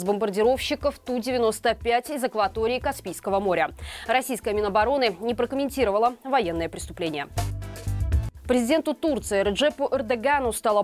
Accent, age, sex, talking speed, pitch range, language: native, 20-39, female, 95 wpm, 210-260 Hz, Russian